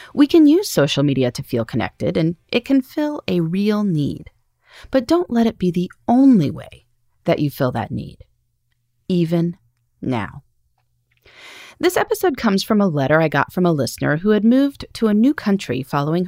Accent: American